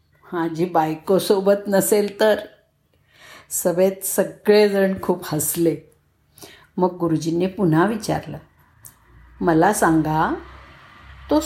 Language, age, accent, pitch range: Marathi, 50-69, native, 170-230 Hz